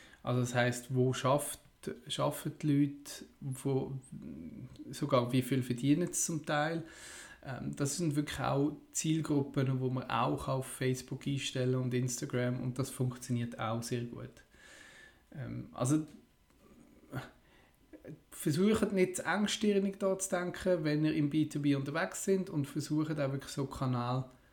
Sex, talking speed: male, 135 wpm